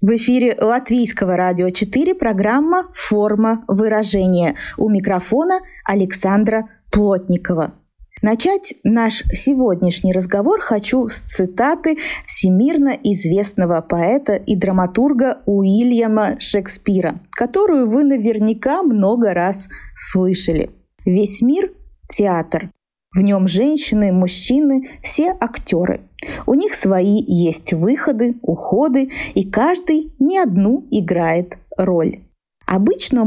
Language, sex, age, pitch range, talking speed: Russian, female, 20-39, 190-270 Hz, 95 wpm